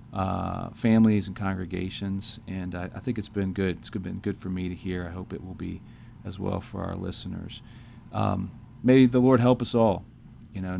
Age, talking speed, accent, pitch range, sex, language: 40-59, 210 wpm, American, 95-110 Hz, male, English